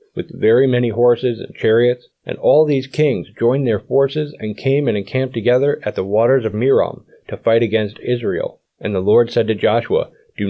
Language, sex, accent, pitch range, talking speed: English, male, American, 110-135 Hz, 195 wpm